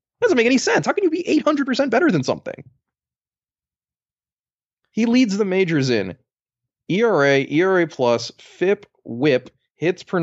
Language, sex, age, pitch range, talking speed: English, male, 20-39, 115-155 Hz, 140 wpm